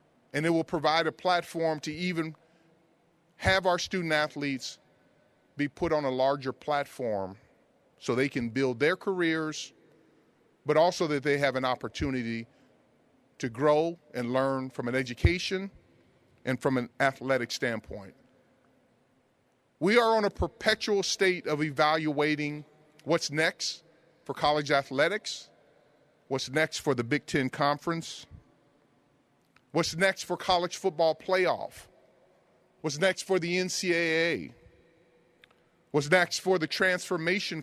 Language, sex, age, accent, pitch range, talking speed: English, male, 40-59, American, 135-170 Hz, 125 wpm